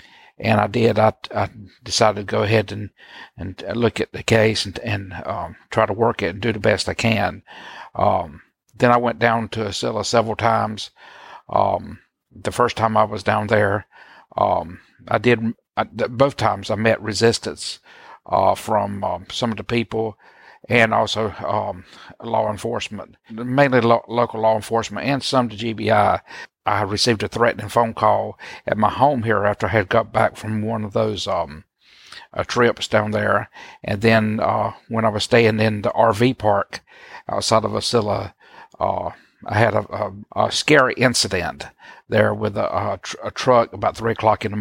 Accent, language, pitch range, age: American, English, 105-115 Hz, 50-69